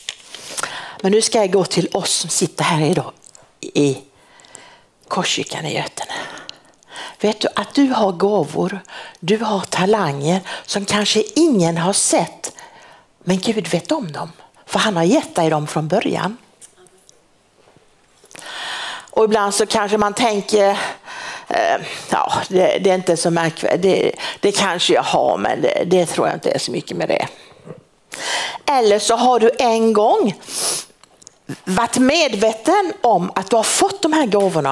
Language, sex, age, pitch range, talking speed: Swedish, female, 60-79, 180-245 Hz, 155 wpm